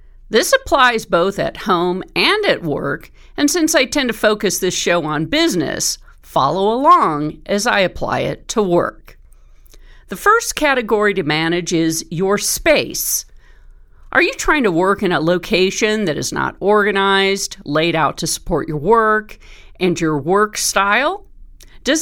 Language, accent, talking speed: English, American, 155 wpm